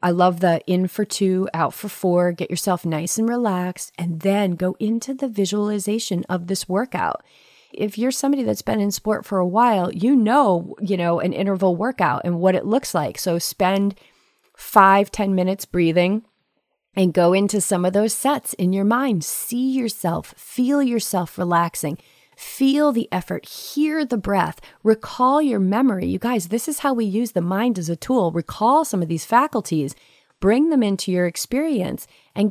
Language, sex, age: English, female, 30-49